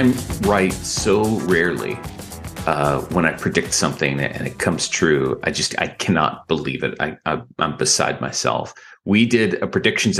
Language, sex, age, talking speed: English, male, 30-49, 155 wpm